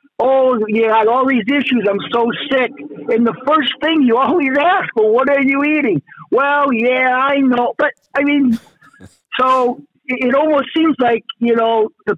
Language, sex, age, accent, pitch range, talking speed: English, male, 50-69, American, 220-285 Hz, 180 wpm